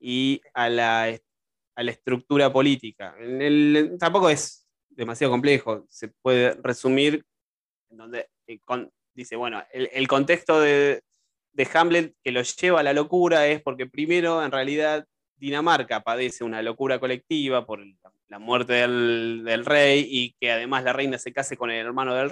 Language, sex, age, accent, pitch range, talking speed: Spanish, male, 20-39, Argentinian, 125-155 Hz, 160 wpm